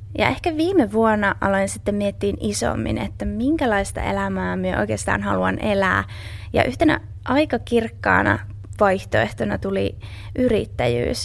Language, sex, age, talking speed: Finnish, female, 20-39, 115 wpm